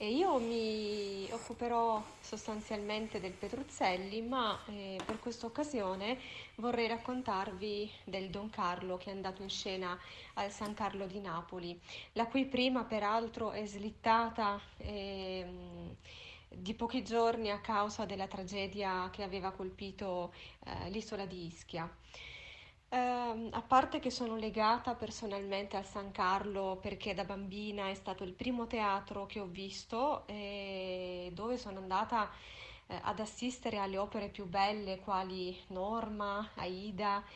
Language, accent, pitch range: Italian, native, 195-225 Hz